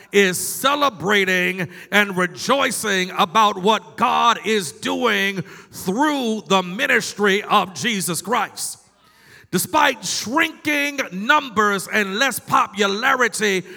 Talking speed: 90 wpm